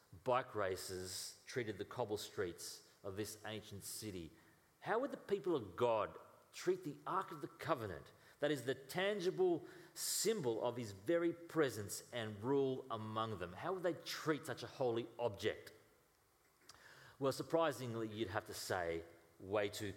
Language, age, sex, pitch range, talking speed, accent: English, 40-59, male, 115-175 Hz, 155 wpm, Australian